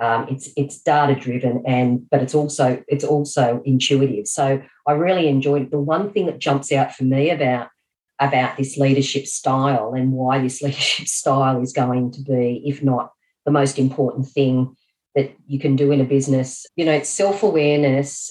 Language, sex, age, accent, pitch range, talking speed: English, female, 40-59, Australian, 125-140 Hz, 185 wpm